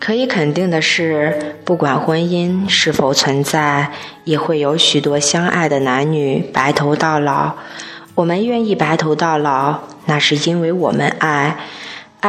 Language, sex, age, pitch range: Chinese, female, 20-39, 145-175 Hz